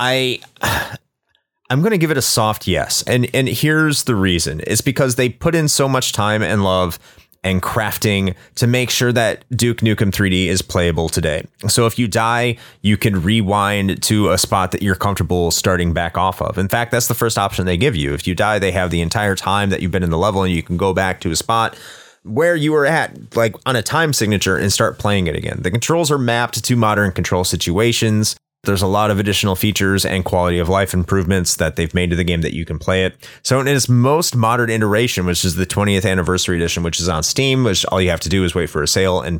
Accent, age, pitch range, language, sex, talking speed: American, 30-49, 90-115 Hz, English, male, 240 wpm